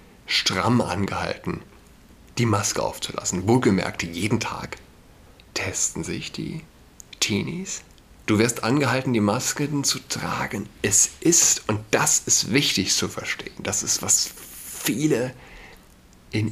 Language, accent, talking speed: German, German, 115 wpm